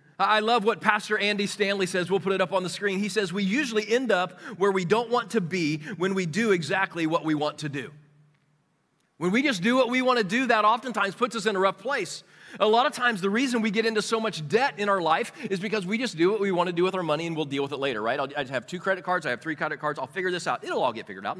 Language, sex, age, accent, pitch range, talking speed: English, male, 30-49, American, 160-220 Hz, 300 wpm